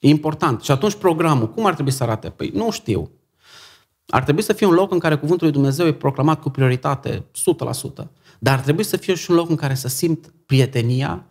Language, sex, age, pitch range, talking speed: Romanian, male, 30-49, 135-165 Hz, 225 wpm